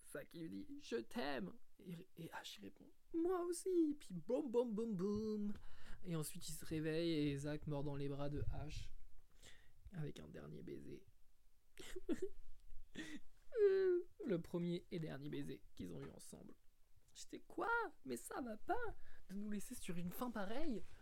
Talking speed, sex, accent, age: 155 wpm, male, French, 20-39